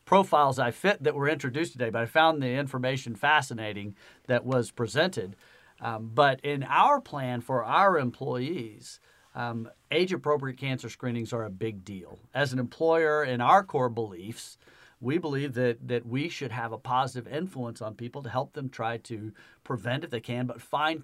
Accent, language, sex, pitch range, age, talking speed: American, English, male, 120-150 Hz, 50-69, 175 wpm